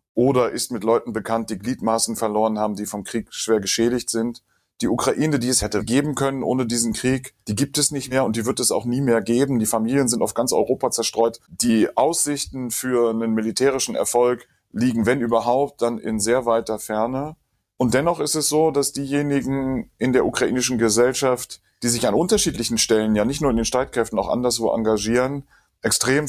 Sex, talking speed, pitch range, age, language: male, 195 wpm, 110-130 Hz, 30-49, German